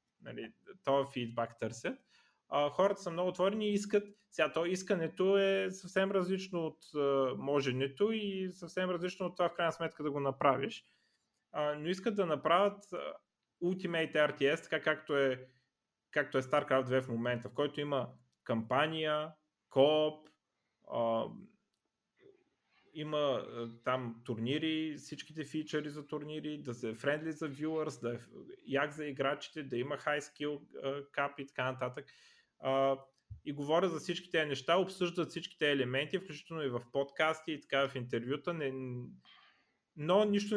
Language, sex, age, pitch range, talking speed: Bulgarian, male, 30-49, 130-170 Hz, 140 wpm